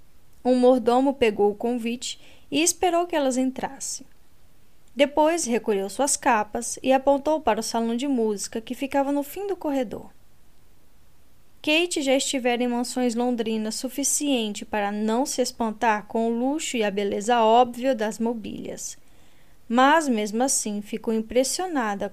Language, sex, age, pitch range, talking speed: Portuguese, female, 10-29, 220-275 Hz, 140 wpm